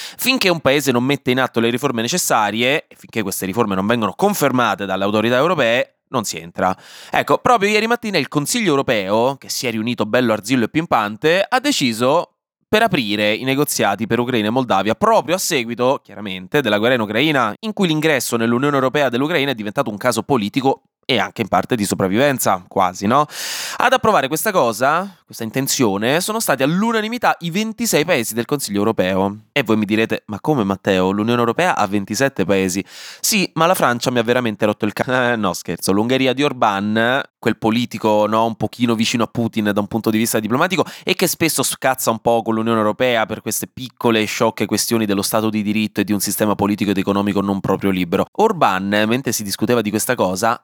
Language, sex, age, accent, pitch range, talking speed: Italian, male, 20-39, native, 110-145 Hz, 200 wpm